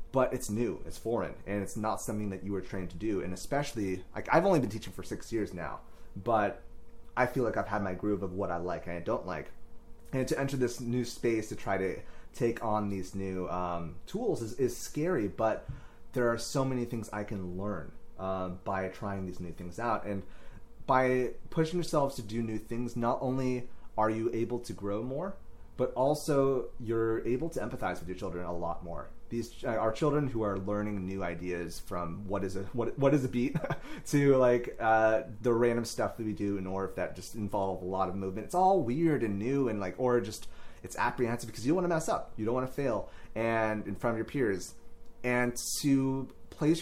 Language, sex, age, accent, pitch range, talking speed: English, male, 30-49, American, 95-125 Hz, 220 wpm